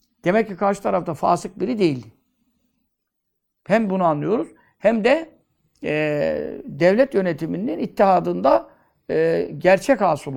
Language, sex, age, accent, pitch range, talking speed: Turkish, male, 60-79, native, 155-215 Hz, 110 wpm